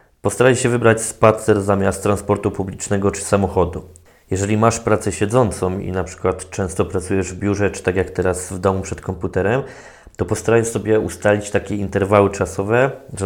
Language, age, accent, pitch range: Polish, 20-39, native, 95-105 Hz